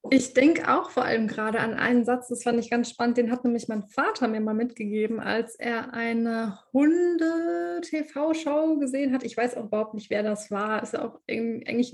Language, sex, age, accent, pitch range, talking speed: German, female, 20-39, German, 225-255 Hz, 200 wpm